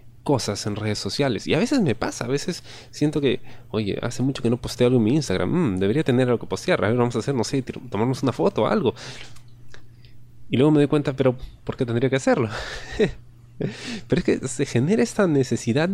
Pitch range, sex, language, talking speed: 115-150 Hz, male, Spanish, 220 wpm